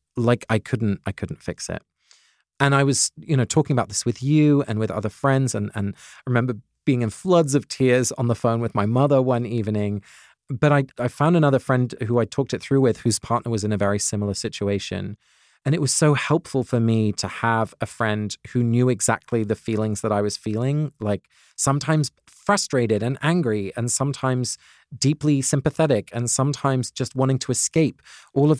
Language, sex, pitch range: English, male, 105-135 Hz